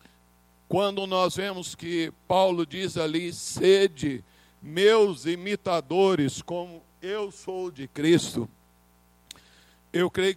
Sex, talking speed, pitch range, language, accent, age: male, 100 wpm, 160-205 Hz, Portuguese, Brazilian, 60-79